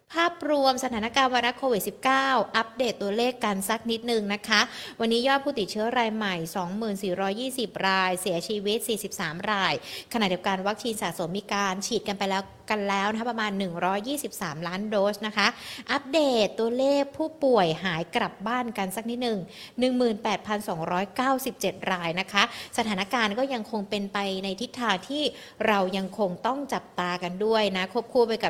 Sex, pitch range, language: female, 200-255 Hz, Thai